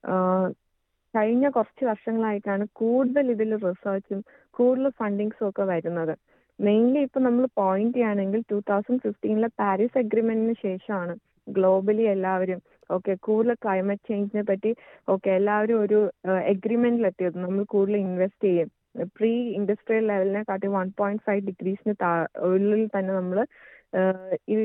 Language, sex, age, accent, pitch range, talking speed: Malayalam, female, 20-39, native, 190-225 Hz, 115 wpm